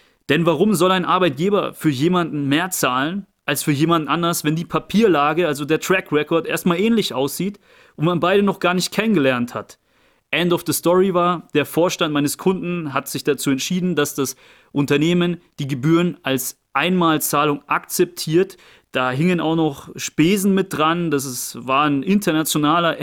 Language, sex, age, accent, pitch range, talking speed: German, male, 30-49, German, 140-175 Hz, 165 wpm